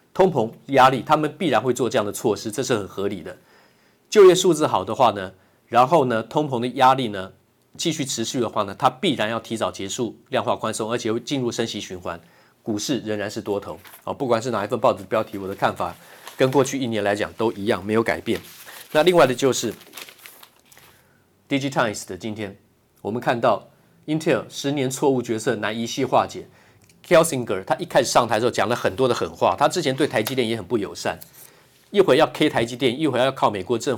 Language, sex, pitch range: Chinese, male, 110-135 Hz